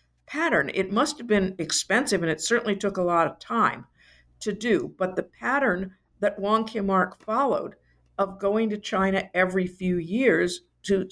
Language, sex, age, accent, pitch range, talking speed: English, female, 50-69, American, 180-210 Hz, 165 wpm